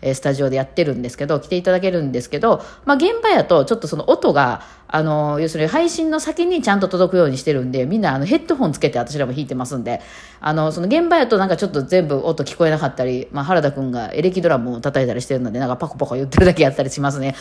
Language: Japanese